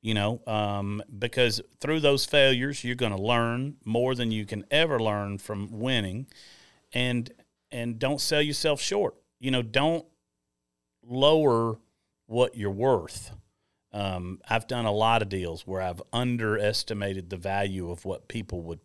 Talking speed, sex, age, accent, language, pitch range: 155 wpm, male, 40-59, American, English, 95-120 Hz